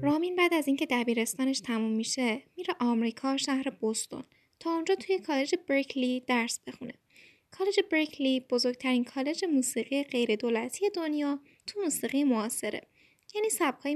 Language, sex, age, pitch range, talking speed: Persian, female, 10-29, 235-310 Hz, 130 wpm